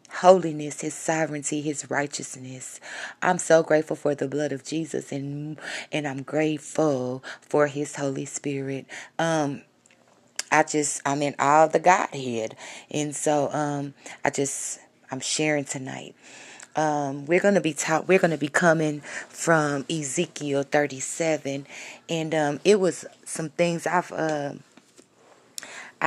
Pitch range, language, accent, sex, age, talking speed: 140-165 Hz, English, American, female, 20-39, 130 wpm